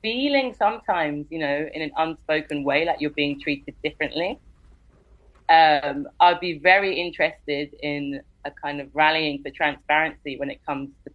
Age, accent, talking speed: 30-49, British, 155 wpm